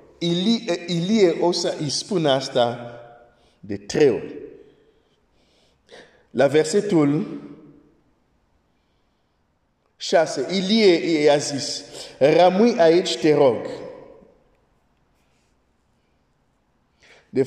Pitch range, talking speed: 125-170 Hz, 65 wpm